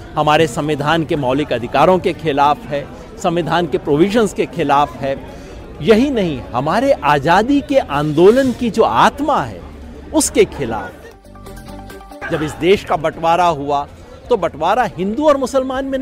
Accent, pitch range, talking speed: native, 140-215 Hz, 140 wpm